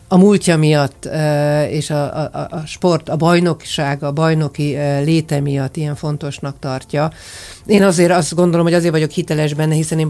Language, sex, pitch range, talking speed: Hungarian, female, 135-160 Hz, 165 wpm